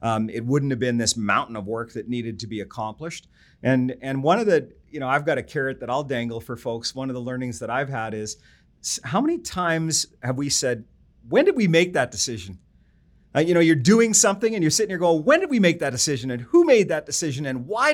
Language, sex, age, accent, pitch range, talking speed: English, male, 40-59, American, 135-175 Hz, 250 wpm